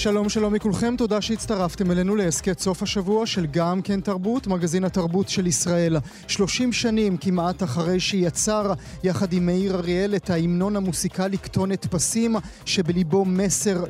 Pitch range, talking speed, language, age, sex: 175-210 Hz, 140 wpm, Hebrew, 30-49, male